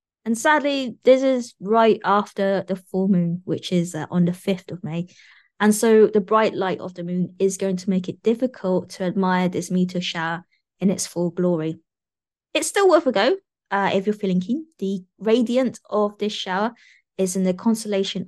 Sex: female